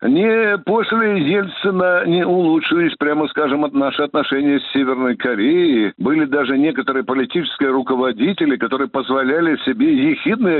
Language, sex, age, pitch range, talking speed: Russian, male, 60-79, 155-240 Hz, 120 wpm